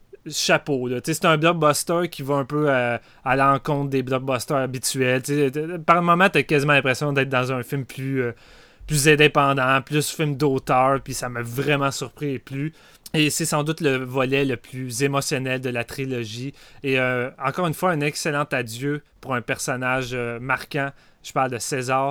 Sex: male